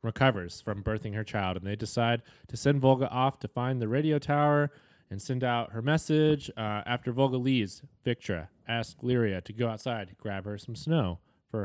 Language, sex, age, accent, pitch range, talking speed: English, male, 20-39, American, 110-135 Hz, 190 wpm